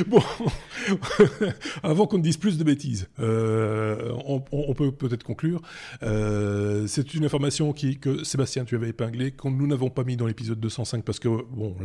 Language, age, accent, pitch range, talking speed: French, 20-39, French, 110-140 Hz, 175 wpm